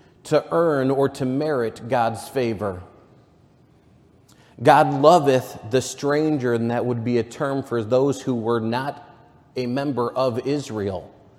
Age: 30-49